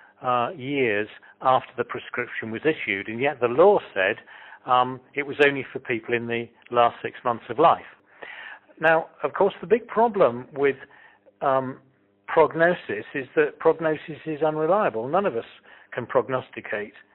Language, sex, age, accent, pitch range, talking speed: English, male, 40-59, British, 130-165 Hz, 155 wpm